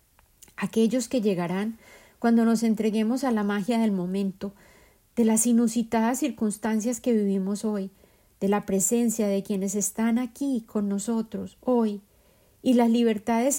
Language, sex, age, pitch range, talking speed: Spanish, female, 40-59, 205-235 Hz, 135 wpm